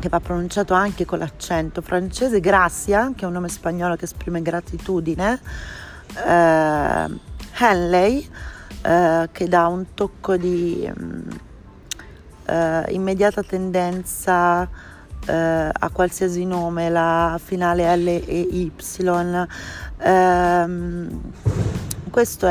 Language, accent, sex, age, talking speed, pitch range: Italian, native, female, 30-49, 90 wpm, 170-185 Hz